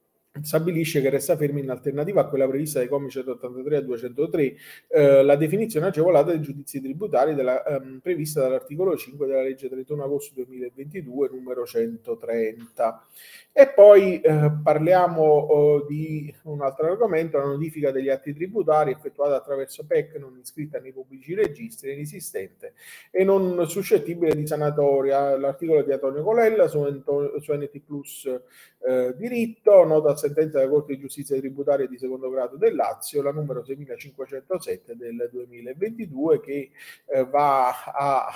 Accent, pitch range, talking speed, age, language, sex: native, 135-180 Hz, 140 wpm, 30-49, Italian, male